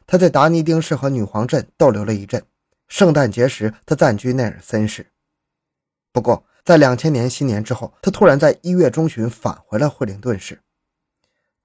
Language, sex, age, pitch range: Chinese, male, 20-39, 105-150 Hz